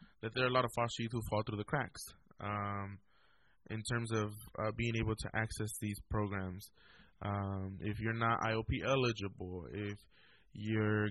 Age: 20-39